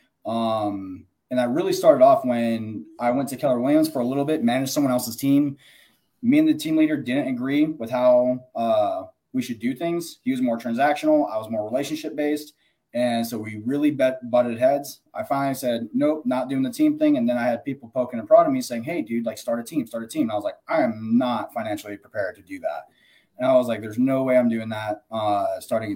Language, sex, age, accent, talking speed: English, male, 20-39, American, 235 wpm